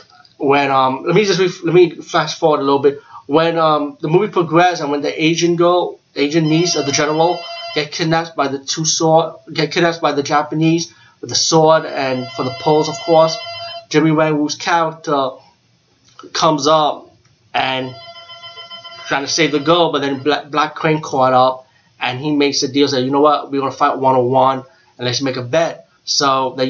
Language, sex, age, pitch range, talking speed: English, male, 20-39, 135-160 Hz, 200 wpm